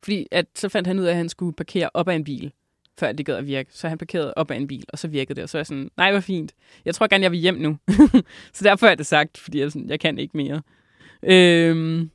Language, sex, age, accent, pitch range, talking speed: Danish, female, 20-39, native, 155-200 Hz, 290 wpm